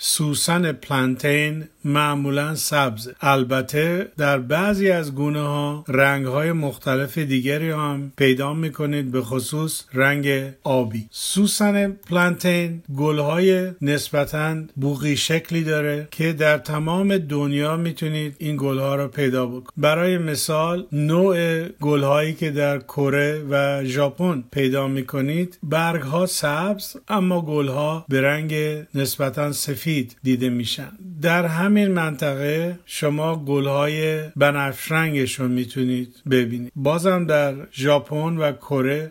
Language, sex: Persian, male